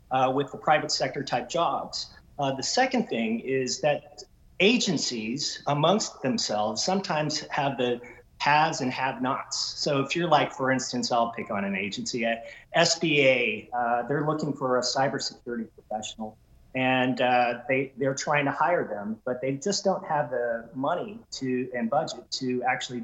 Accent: American